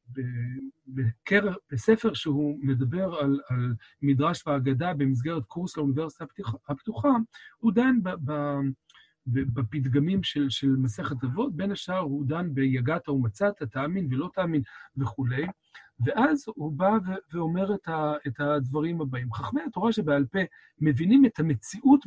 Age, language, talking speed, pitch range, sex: 50-69, Hebrew, 125 wpm, 135-195 Hz, male